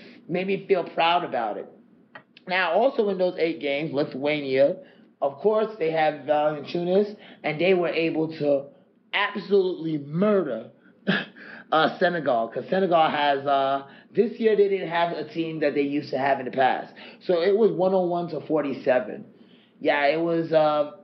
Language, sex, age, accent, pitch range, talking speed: English, male, 30-49, American, 145-195 Hz, 170 wpm